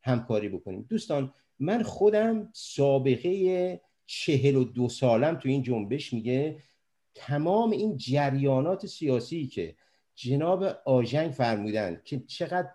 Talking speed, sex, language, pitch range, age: 115 wpm, male, Persian, 125-180 Hz, 50-69